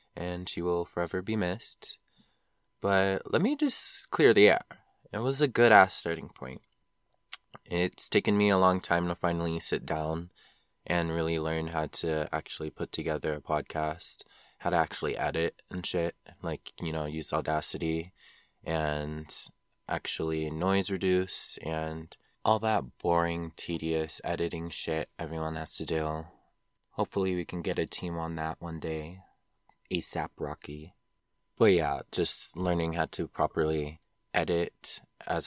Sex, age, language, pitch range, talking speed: male, 20-39, English, 80-90 Hz, 145 wpm